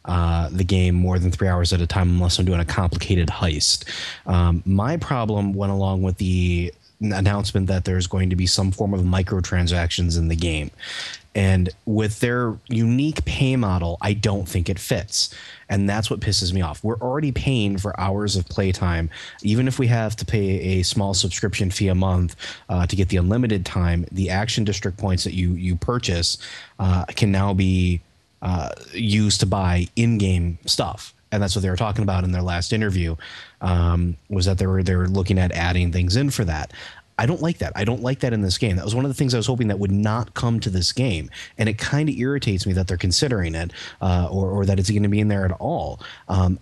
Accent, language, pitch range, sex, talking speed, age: American, English, 90-110 Hz, male, 220 wpm, 30-49